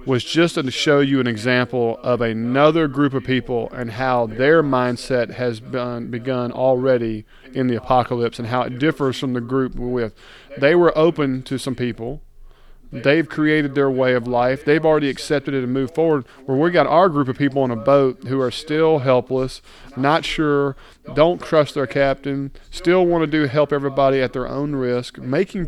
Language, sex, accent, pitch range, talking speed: English, male, American, 125-150 Hz, 190 wpm